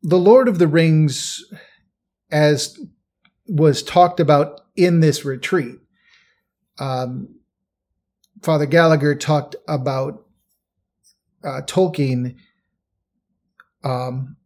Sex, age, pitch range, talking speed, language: male, 40-59, 135-170 Hz, 85 wpm, English